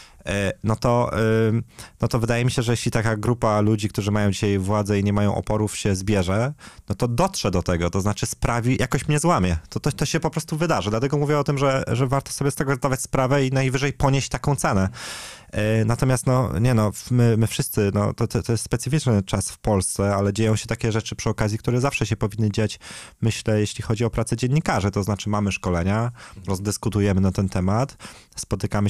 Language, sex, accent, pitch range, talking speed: Polish, male, native, 105-125 Hz, 210 wpm